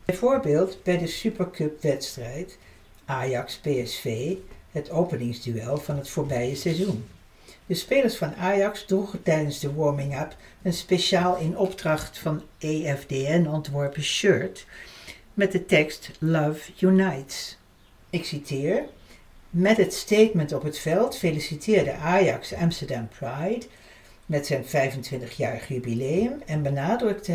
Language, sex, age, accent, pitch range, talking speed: Dutch, female, 60-79, Dutch, 135-180 Hz, 110 wpm